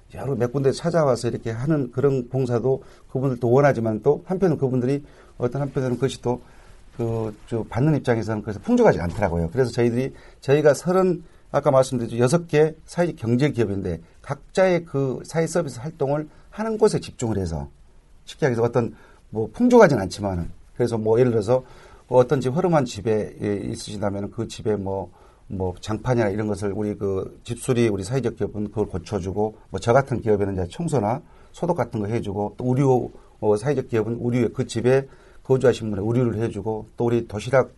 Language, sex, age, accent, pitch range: Korean, male, 40-59, native, 105-135 Hz